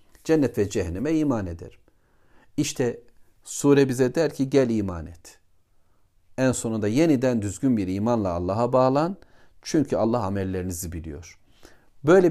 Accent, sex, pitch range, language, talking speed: native, male, 100-135 Hz, Turkish, 125 wpm